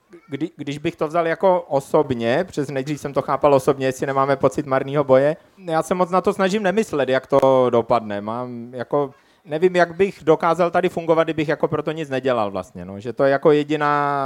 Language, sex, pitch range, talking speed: Czech, male, 125-155 Hz, 185 wpm